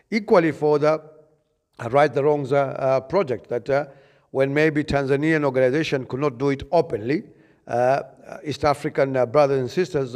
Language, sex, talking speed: English, male, 160 wpm